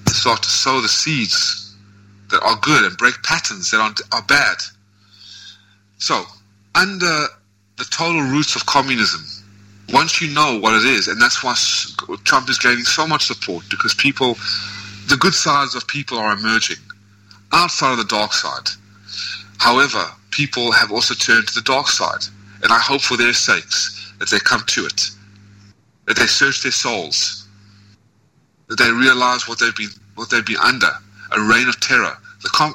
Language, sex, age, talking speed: English, male, 30-49, 165 wpm